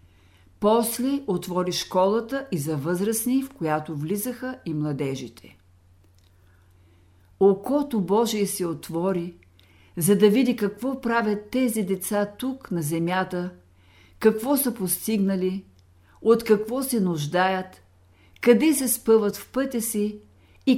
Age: 50-69